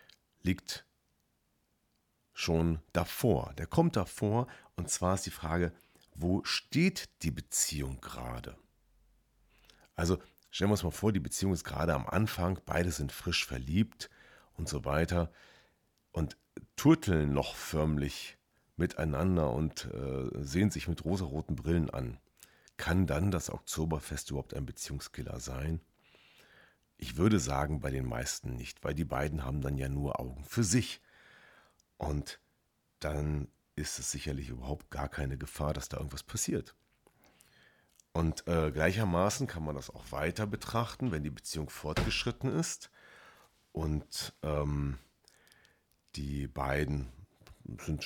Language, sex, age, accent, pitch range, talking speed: German, male, 40-59, German, 70-95 Hz, 130 wpm